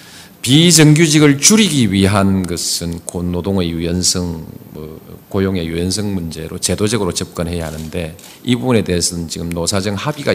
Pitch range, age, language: 85-120 Hz, 40-59, Korean